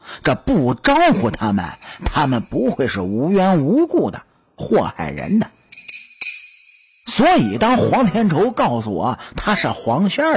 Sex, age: male, 50-69